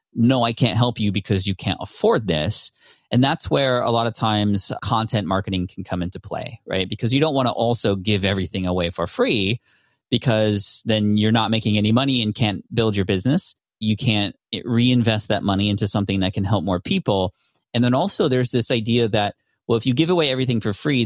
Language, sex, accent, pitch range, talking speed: English, male, American, 100-120 Hz, 210 wpm